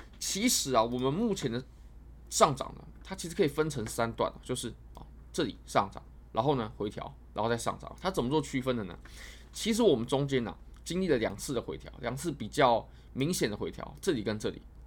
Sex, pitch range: male, 95-140 Hz